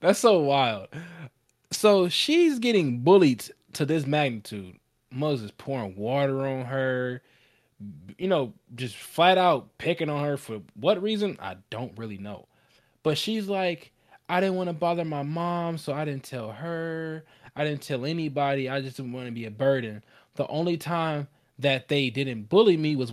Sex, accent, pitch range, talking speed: male, American, 120-160 Hz, 170 wpm